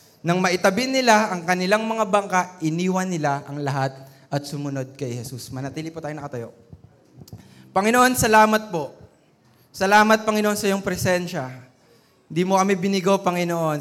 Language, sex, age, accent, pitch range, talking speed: Filipino, male, 20-39, native, 180-230 Hz, 140 wpm